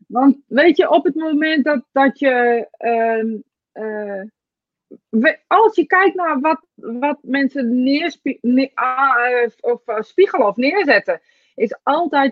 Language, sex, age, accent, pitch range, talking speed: Dutch, female, 30-49, Dutch, 210-275 Hz, 140 wpm